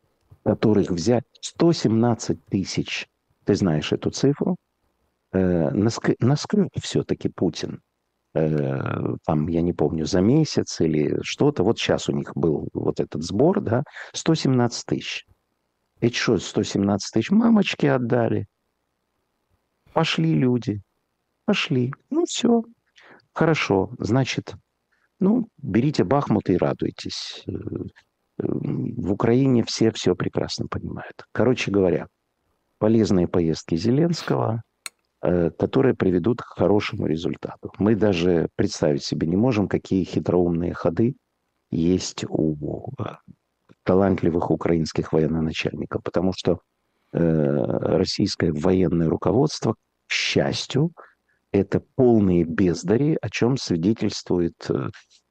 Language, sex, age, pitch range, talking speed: Russian, male, 50-69, 85-125 Hz, 100 wpm